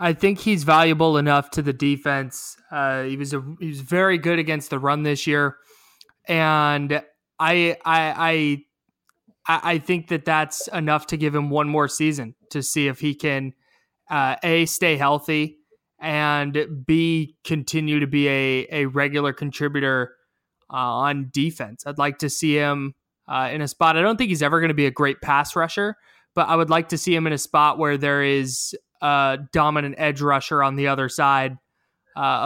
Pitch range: 140-160 Hz